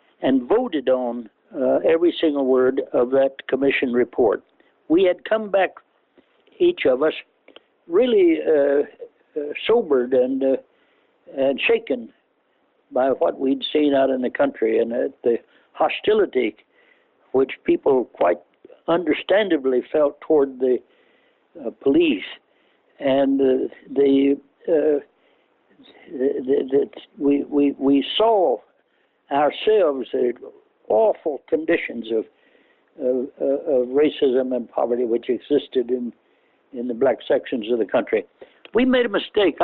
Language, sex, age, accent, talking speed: English, male, 60-79, American, 125 wpm